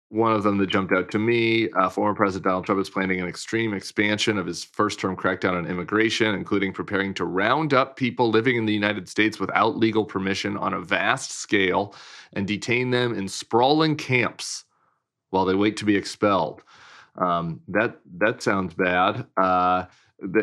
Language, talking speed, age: English, 175 wpm, 30-49